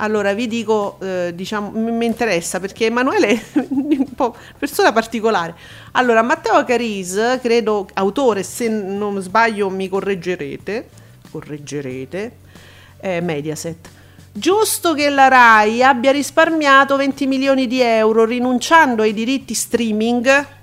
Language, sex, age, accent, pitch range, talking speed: Italian, female, 40-59, native, 185-265 Hz, 120 wpm